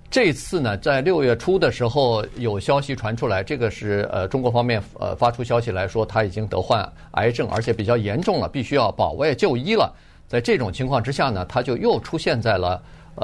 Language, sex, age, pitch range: Chinese, male, 50-69, 110-135 Hz